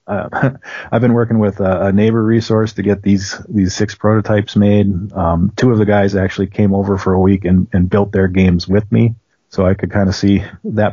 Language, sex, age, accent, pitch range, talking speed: English, male, 40-59, American, 90-105 Hz, 225 wpm